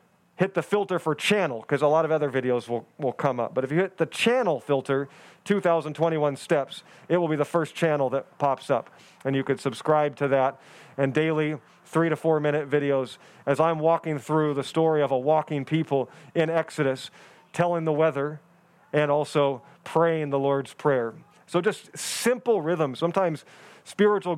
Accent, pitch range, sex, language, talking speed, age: American, 145-185 Hz, male, English, 180 wpm, 40-59